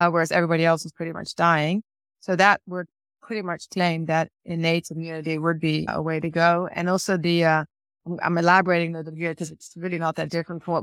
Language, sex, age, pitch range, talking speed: English, female, 20-39, 160-180 Hz, 215 wpm